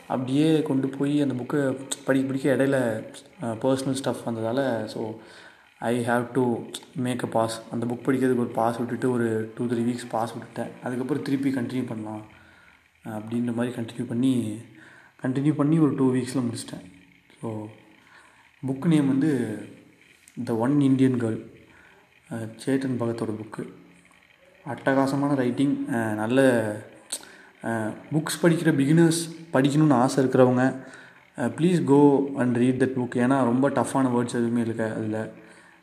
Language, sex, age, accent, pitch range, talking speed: Tamil, male, 20-39, native, 115-135 Hz, 130 wpm